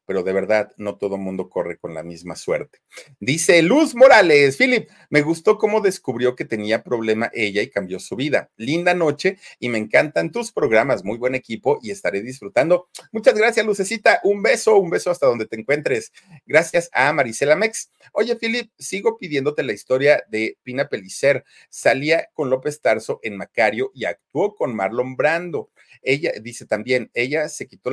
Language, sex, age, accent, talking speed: Spanish, male, 40-59, Mexican, 175 wpm